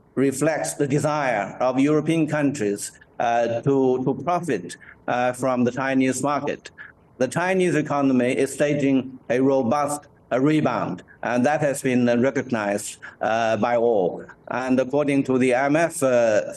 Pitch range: 120-140 Hz